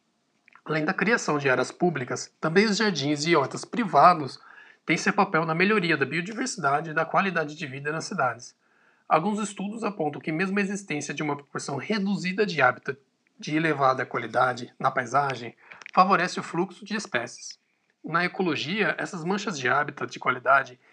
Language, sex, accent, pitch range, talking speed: Portuguese, male, Brazilian, 150-200 Hz, 165 wpm